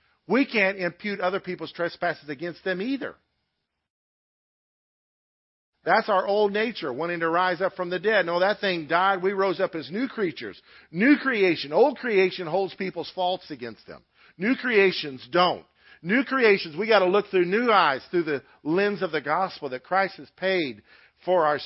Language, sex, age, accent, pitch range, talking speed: English, male, 50-69, American, 155-195 Hz, 175 wpm